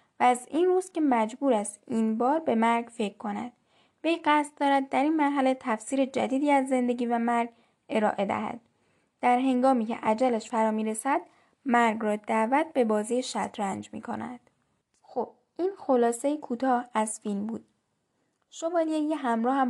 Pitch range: 225-275 Hz